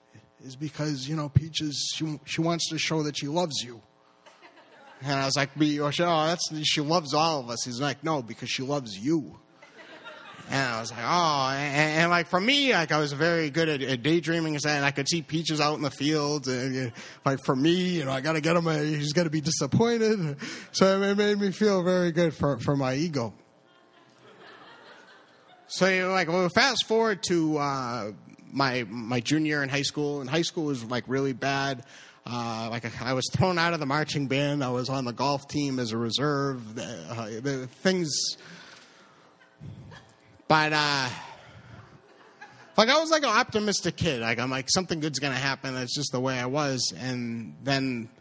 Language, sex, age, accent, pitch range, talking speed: English, male, 30-49, American, 130-165 Hz, 200 wpm